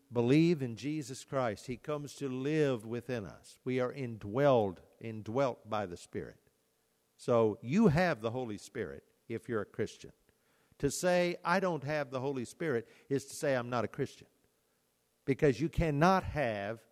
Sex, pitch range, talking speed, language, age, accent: male, 120-160 Hz, 165 wpm, English, 50-69, American